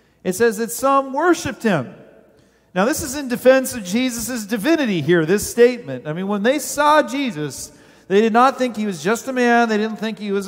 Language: English